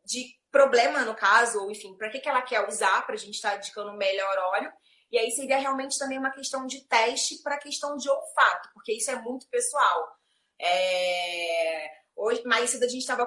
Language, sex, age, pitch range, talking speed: Portuguese, female, 20-39, 210-275 Hz, 200 wpm